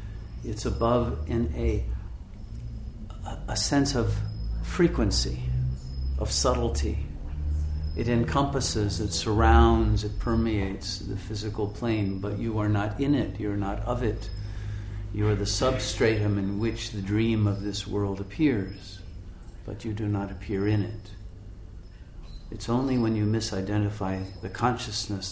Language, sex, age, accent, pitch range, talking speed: English, male, 50-69, American, 90-105 Hz, 135 wpm